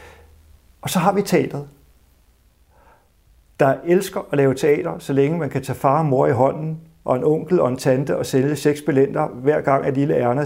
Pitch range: 125-155 Hz